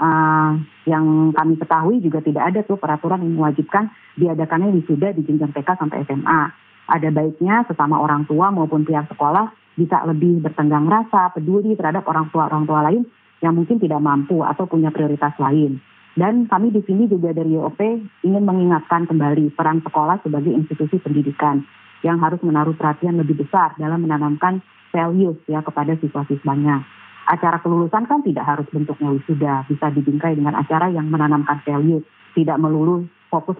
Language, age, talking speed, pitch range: Indonesian, 30-49, 165 wpm, 150-180 Hz